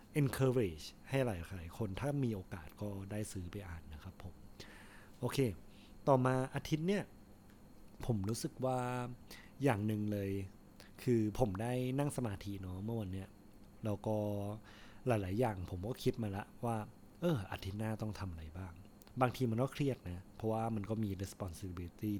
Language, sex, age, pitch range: Thai, male, 20-39, 100-120 Hz